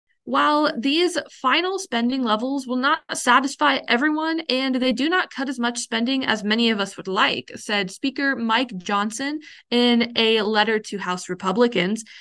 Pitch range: 210-285 Hz